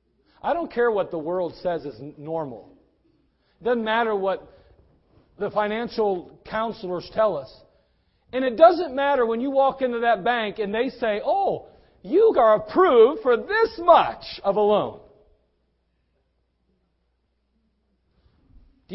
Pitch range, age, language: 155-240 Hz, 40-59, English